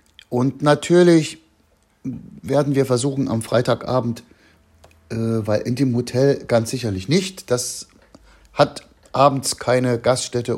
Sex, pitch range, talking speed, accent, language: male, 105-130 Hz, 115 wpm, German, German